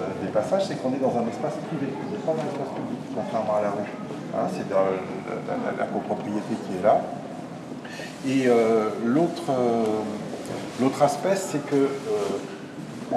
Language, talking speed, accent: French, 155 wpm, French